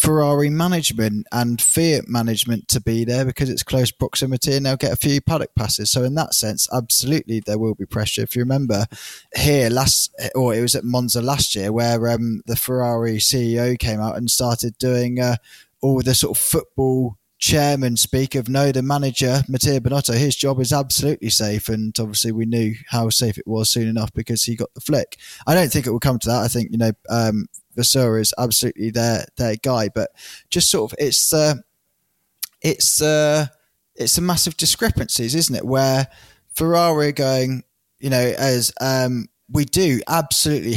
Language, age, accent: English, 10-29, British